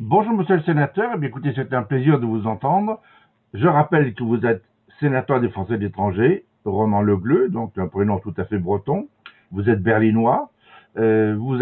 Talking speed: 195 wpm